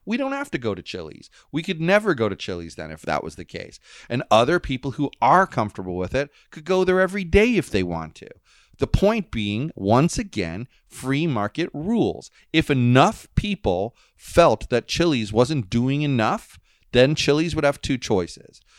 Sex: male